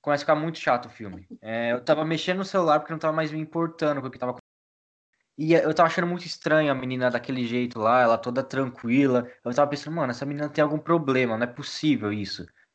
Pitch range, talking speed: 115-155 Hz, 240 wpm